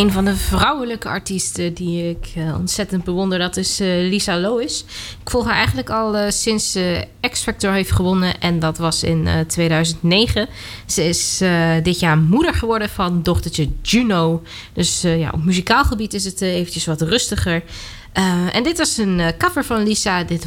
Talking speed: 155 wpm